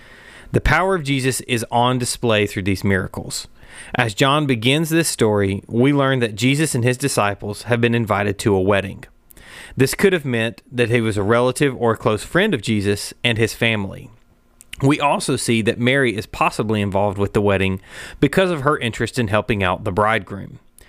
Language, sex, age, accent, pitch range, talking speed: English, male, 30-49, American, 105-130 Hz, 190 wpm